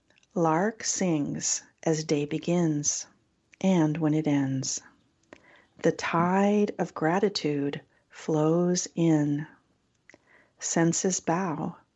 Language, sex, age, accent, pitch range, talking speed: English, female, 50-69, American, 155-190 Hz, 85 wpm